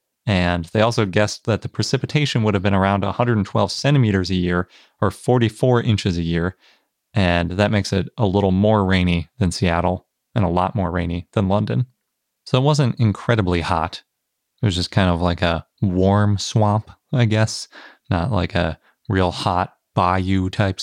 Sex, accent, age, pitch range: male, American, 30-49, 95-120 Hz